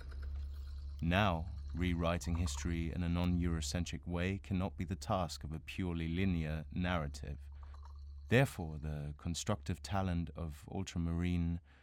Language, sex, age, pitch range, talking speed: English, male, 30-49, 80-100 Hz, 110 wpm